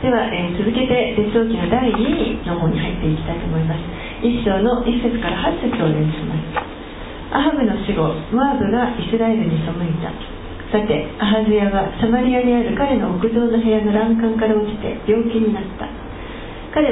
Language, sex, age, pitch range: Japanese, female, 40-59, 200-235 Hz